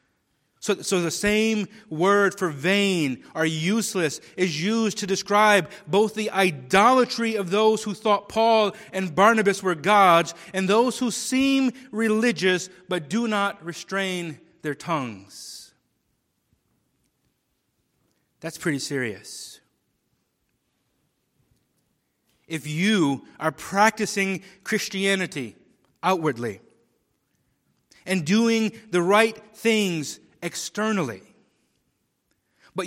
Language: English